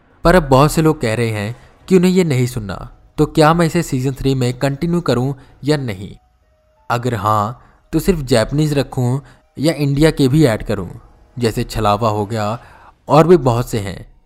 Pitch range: 105-140 Hz